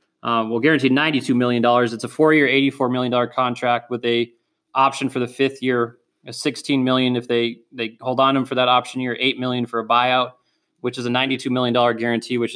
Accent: American